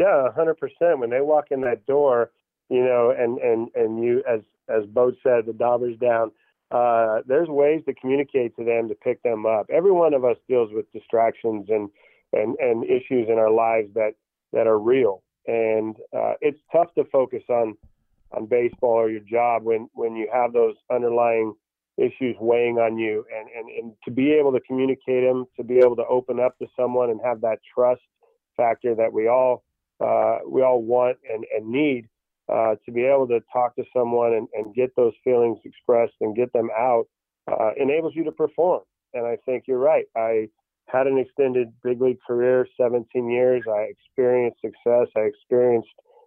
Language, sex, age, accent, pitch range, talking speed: English, male, 40-59, American, 115-130 Hz, 190 wpm